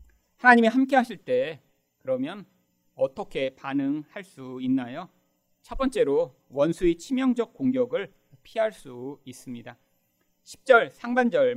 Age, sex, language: 40-59, male, Korean